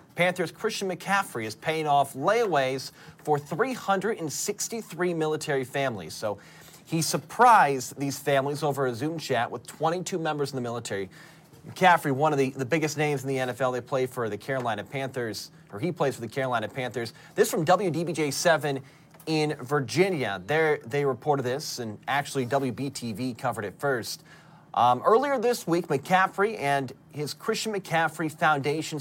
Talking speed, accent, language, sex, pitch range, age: 150 wpm, American, English, male, 135-175 Hz, 30-49